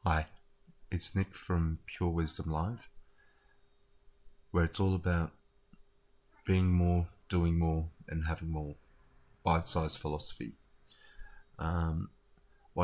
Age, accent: 30-49, Australian